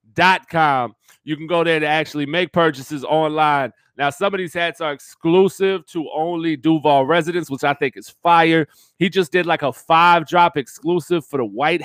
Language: English